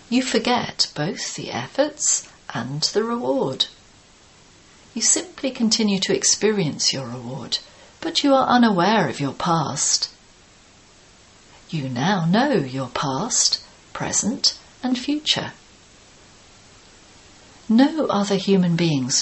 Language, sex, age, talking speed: English, female, 40-59, 105 wpm